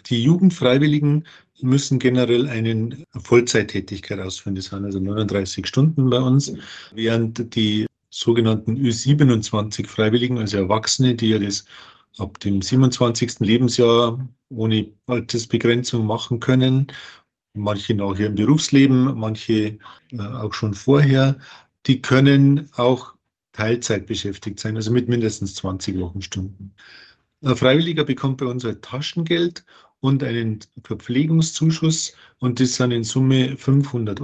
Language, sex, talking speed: German, male, 115 wpm